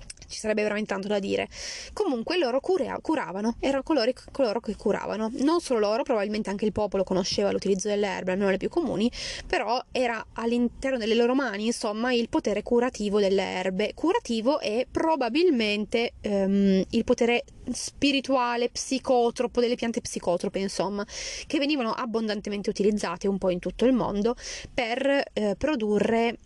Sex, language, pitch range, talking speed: female, Italian, 200-255 Hz, 145 wpm